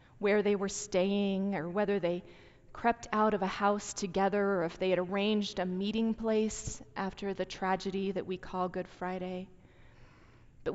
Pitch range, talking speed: 155-210 Hz, 165 wpm